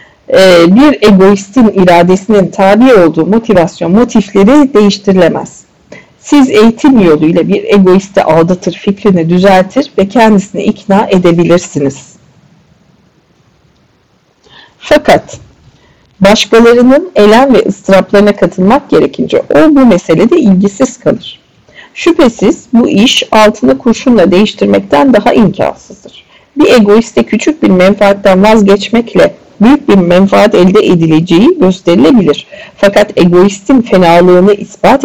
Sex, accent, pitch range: female, native, 180-245 Hz